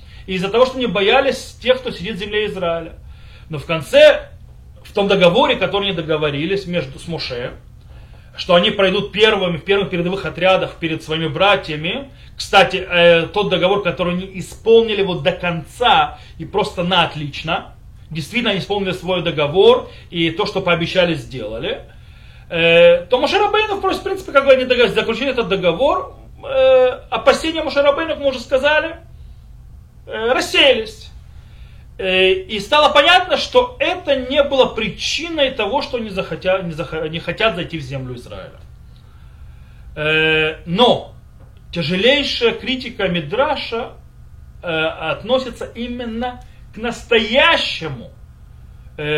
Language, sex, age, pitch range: Russian, male, 30-49, 170-265 Hz